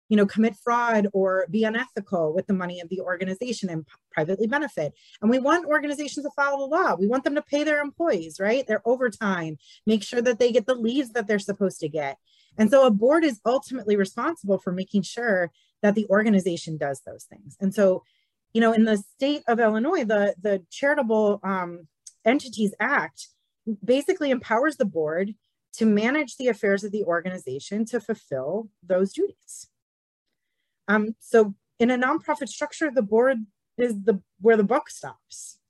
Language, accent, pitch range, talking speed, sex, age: English, American, 170-235 Hz, 180 wpm, female, 30-49